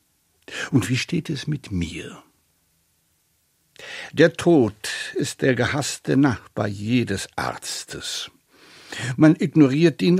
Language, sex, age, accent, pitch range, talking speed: German, male, 60-79, German, 105-150 Hz, 100 wpm